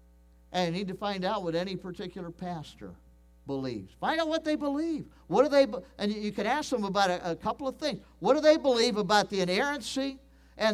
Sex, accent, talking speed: male, American, 225 wpm